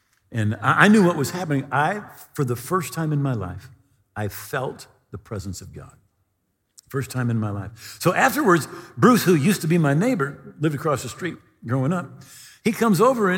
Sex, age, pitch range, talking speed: male, 50-69, 115-180 Hz, 195 wpm